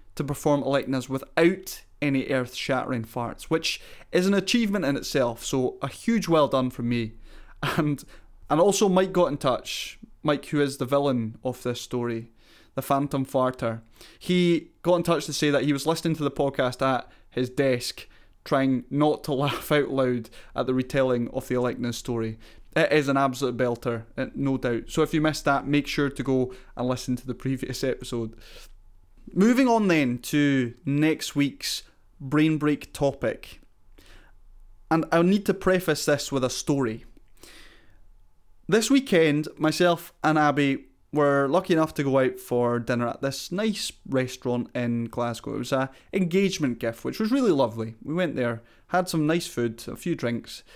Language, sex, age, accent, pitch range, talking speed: English, male, 20-39, British, 120-160 Hz, 175 wpm